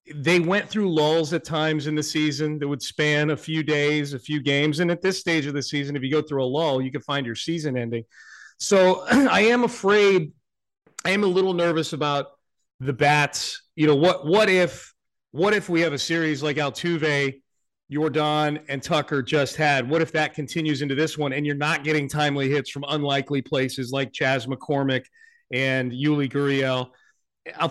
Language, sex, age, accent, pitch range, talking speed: English, male, 40-59, American, 135-160 Hz, 195 wpm